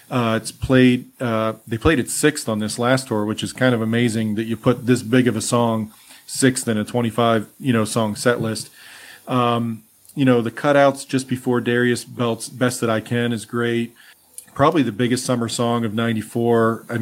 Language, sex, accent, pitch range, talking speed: English, male, American, 115-130 Hz, 200 wpm